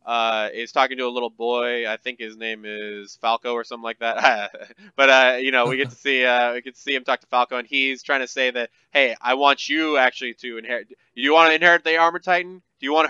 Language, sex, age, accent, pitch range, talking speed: English, male, 20-39, American, 115-140 Hz, 260 wpm